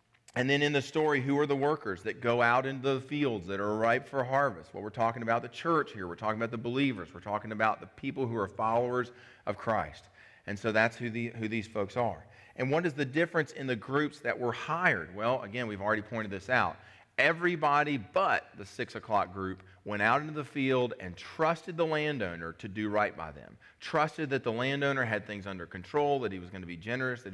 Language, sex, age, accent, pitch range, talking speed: English, male, 30-49, American, 95-135 Hz, 230 wpm